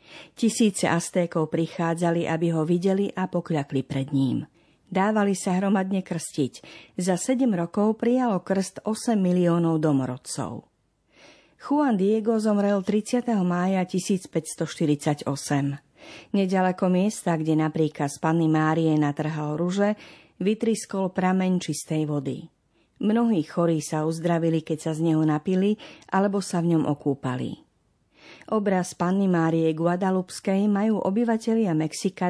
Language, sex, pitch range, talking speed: Slovak, female, 160-200 Hz, 115 wpm